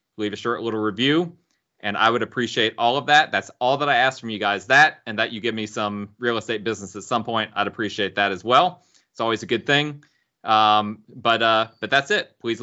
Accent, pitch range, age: American, 110-135 Hz, 30-49